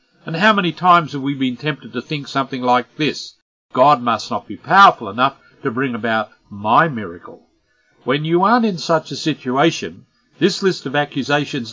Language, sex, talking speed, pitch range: English, male, 180 wpm, 125-170 Hz